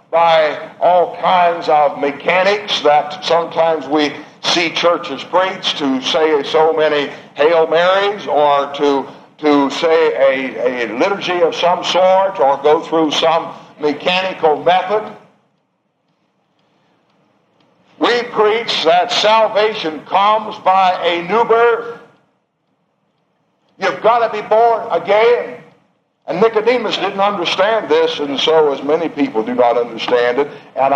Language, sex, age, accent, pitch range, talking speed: English, male, 60-79, American, 155-215 Hz, 120 wpm